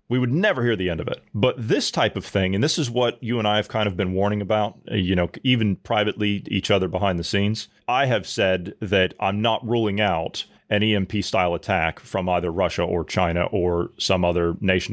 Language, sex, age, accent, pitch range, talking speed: English, male, 30-49, American, 95-140 Hz, 225 wpm